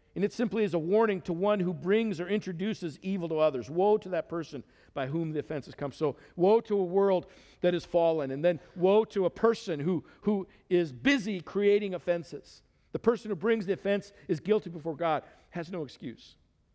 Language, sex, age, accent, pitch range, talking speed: English, male, 50-69, American, 155-205 Hz, 205 wpm